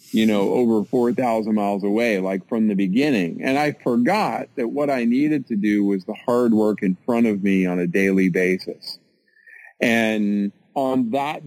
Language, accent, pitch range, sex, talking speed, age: English, American, 100-125 Hz, male, 180 wpm, 40-59